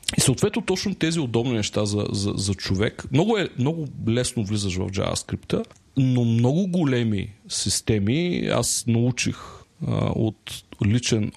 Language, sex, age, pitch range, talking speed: Bulgarian, male, 40-59, 105-125 Hz, 135 wpm